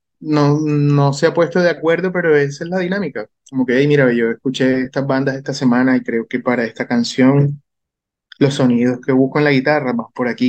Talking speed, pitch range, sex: 210 wpm, 120-140 Hz, male